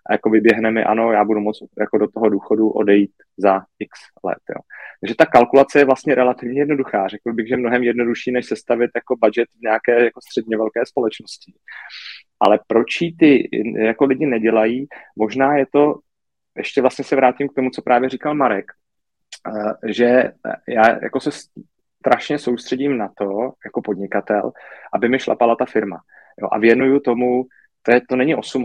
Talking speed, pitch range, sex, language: 170 wpm, 110-125 Hz, male, Czech